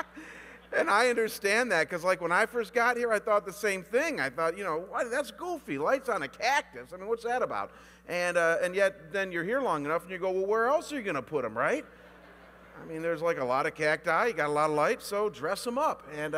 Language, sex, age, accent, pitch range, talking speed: English, male, 50-69, American, 145-190 Hz, 270 wpm